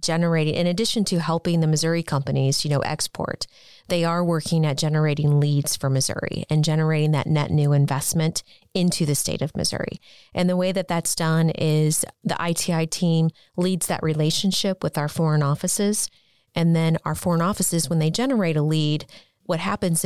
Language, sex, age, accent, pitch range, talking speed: English, female, 30-49, American, 150-170 Hz, 175 wpm